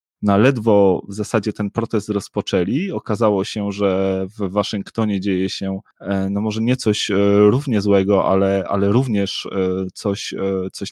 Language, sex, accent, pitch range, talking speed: Polish, male, native, 95-105 Hz, 155 wpm